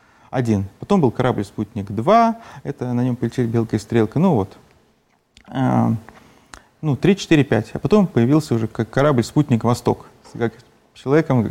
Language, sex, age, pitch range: Russian, male, 30-49, 120-165 Hz